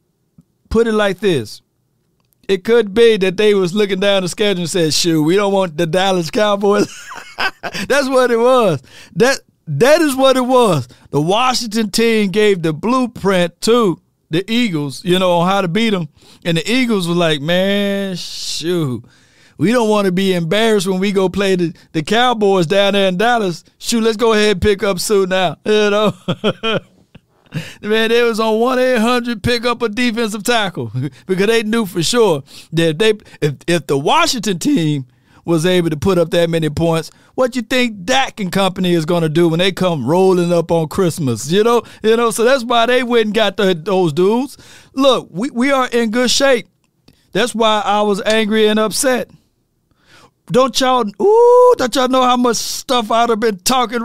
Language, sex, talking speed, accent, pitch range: English, male, 195 wpm, American, 175-235 Hz